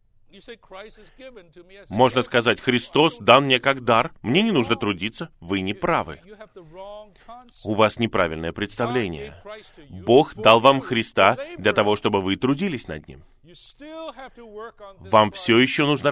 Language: Russian